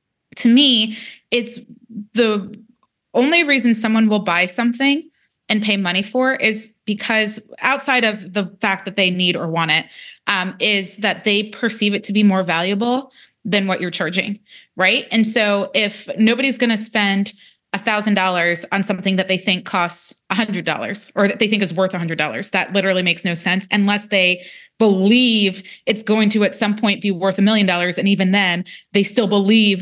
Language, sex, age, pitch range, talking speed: English, female, 20-39, 190-225 Hz, 185 wpm